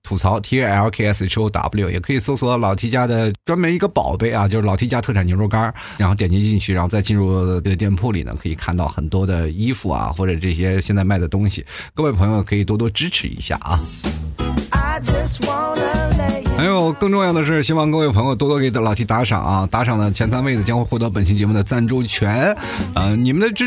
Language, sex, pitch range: Chinese, male, 95-130 Hz